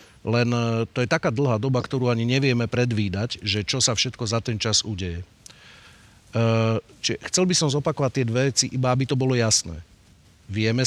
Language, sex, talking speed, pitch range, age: Slovak, male, 170 wpm, 110-135 Hz, 40-59